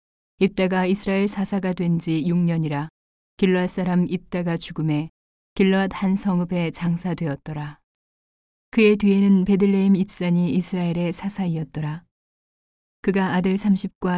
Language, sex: Korean, female